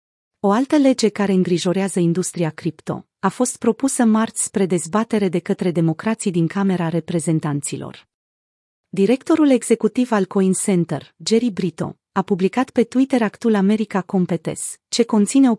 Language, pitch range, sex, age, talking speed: Romanian, 180-225 Hz, female, 30-49, 140 wpm